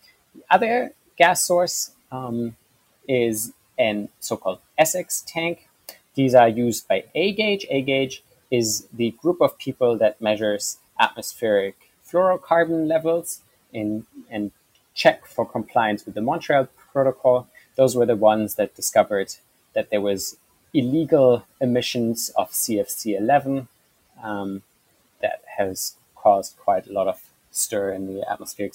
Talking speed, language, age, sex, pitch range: 120 wpm, English, 30-49, male, 105-155 Hz